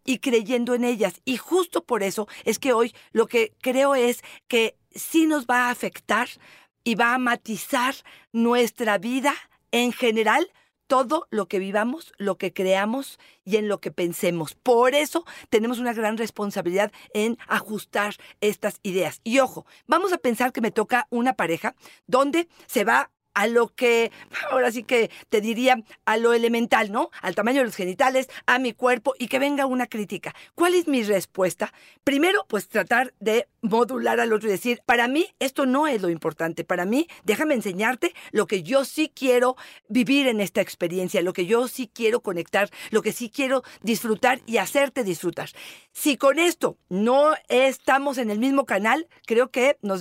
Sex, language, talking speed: female, Spanish, 180 wpm